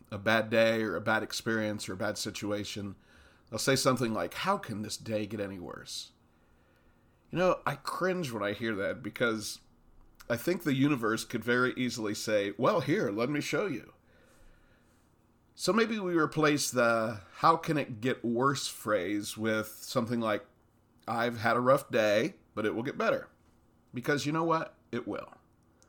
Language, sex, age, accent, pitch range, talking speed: English, male, 40-59, American, 105-130 Hz, 175 wpm